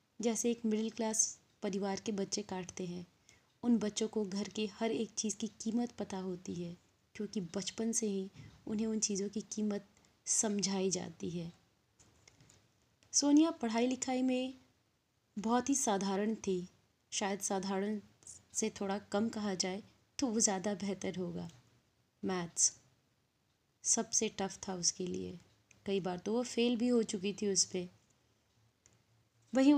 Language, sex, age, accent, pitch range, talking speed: Hindi, female, 20-39, native, 190-225 Hz, 145 wpm